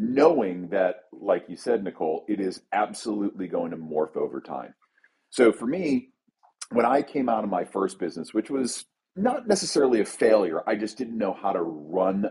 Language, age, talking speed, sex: English, 40-59, 185 wpm, male